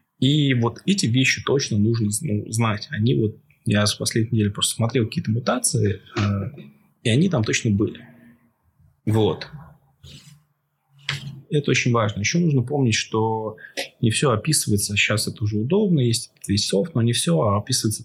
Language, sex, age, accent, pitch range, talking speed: Russian, male, 20-39, native, 105-140 Hz, 150 wpm